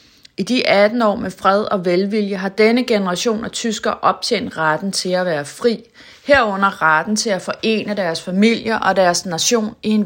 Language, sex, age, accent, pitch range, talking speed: Danish, female, 30-49, native, 180-225 Hz, 185 wpm